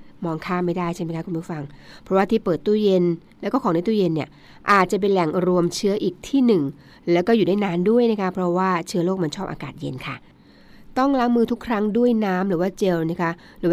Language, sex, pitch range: Thai, female, 170-210 Hz